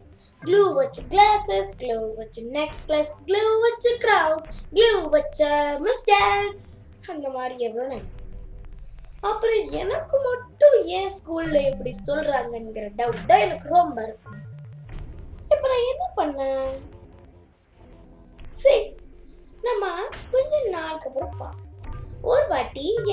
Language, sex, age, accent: Tamil, female, 20-39, native